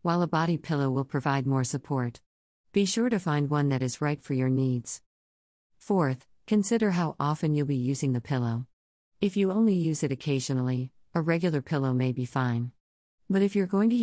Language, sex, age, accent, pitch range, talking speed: English, female, 50-69, American, 130-160 Hz, 195 wpm